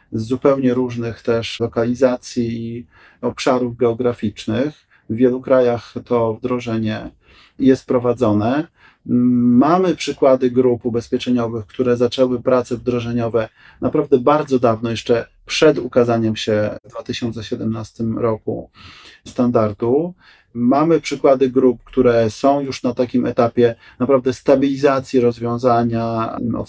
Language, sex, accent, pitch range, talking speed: Polish, male, native, 115-135 Hz, 105 wpm